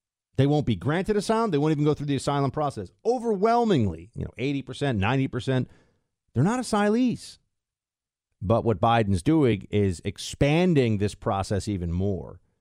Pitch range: 105-140 Hz